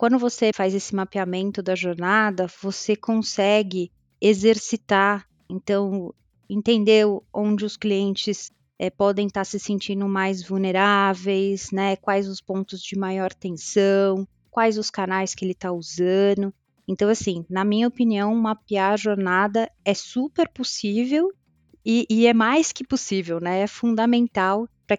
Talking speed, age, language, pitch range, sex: 140 wpm, 20-39, Portuguese, 195-225 Hz, female